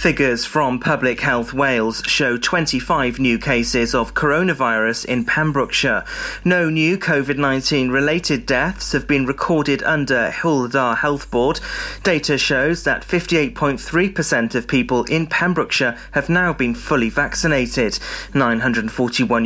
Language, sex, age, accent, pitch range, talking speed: English, male, 30-49, British, 125-165 Hz, 120 wpm